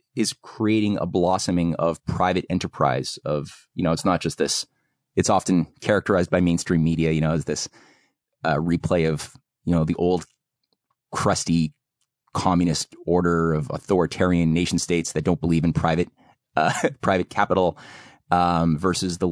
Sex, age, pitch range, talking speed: male, 30-49, 80-95 Hz, 150 wpm